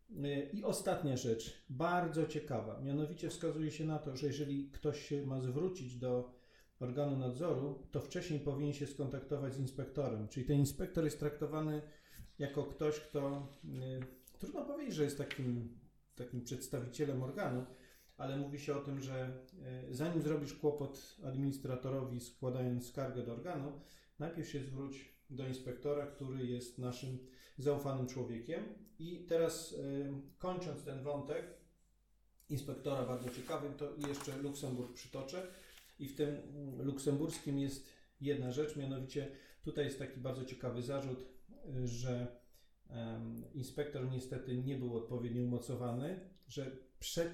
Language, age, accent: Polish, 40-59, native